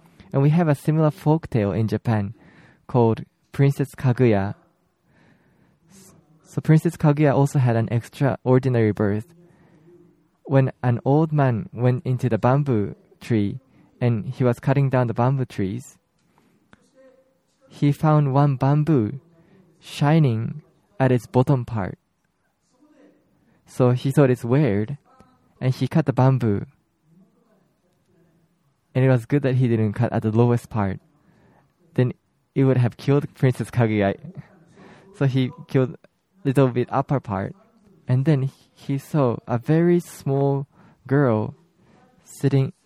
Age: 20-39